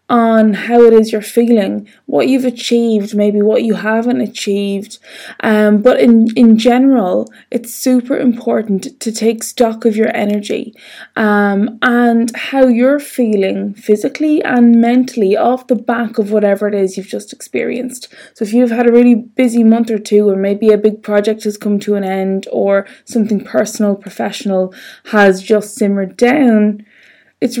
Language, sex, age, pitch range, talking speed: English, female, 20-39, 200-245 Hz, 165 wpm